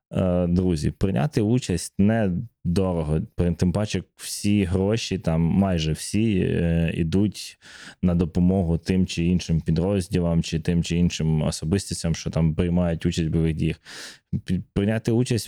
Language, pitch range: Ukrainian, 85-95 Hz